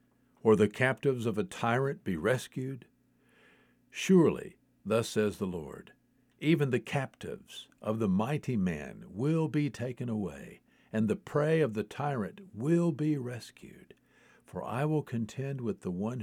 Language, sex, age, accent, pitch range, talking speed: English, male, 60-79, American, 105-135 Hz, 150 wpm